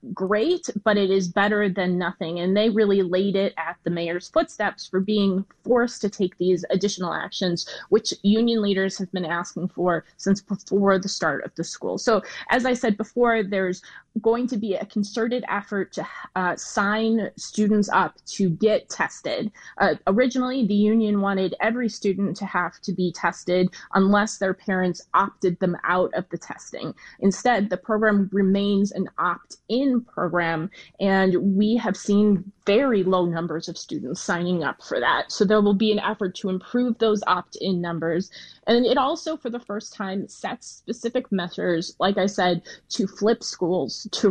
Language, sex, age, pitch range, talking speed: English, female, 20-39, 185-220 Hz, 170 wpm